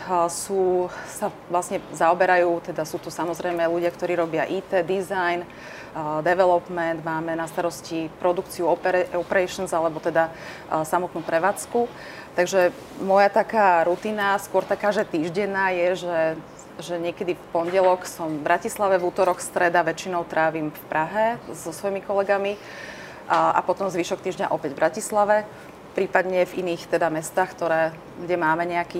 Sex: female